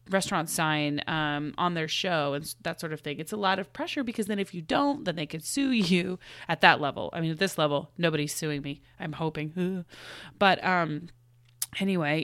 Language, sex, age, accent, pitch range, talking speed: English, female, 20-39, American, 155-205 Hz, 205 wpm